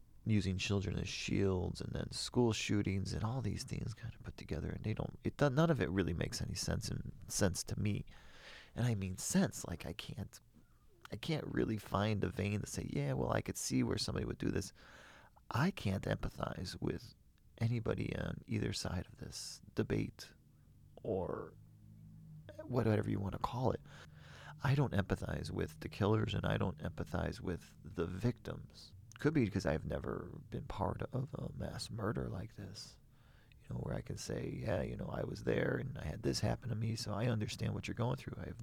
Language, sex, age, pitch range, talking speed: English, male, 40-59, 95-120 Hz, 195 wpm